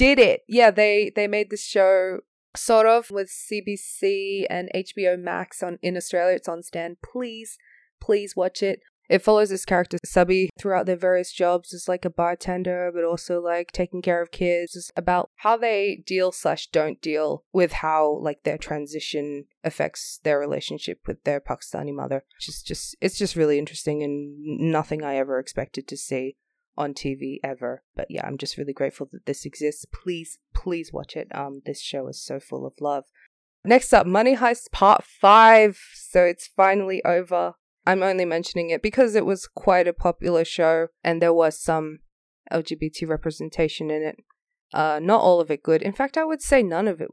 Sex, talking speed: female, 185 wpm